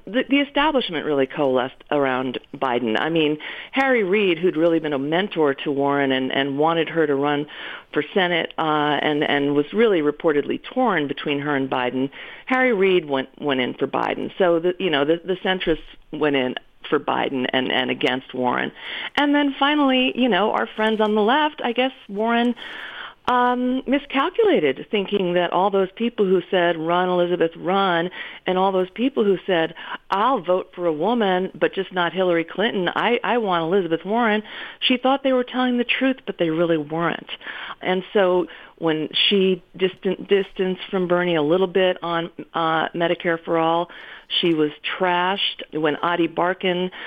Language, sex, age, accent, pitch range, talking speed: English, female, 40-59, American, 160-210 Hz, 175 wpm